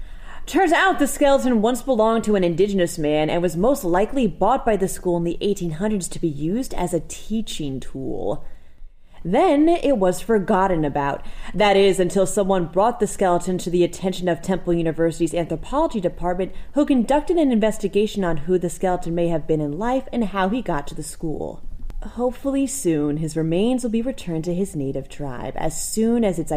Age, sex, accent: 30-49, female, American